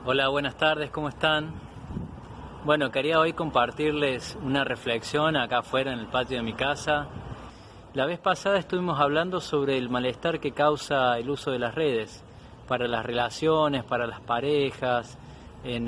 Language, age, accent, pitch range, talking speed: Spanish, 20-39, Argentinian, 125-150 Hz, 155 wpm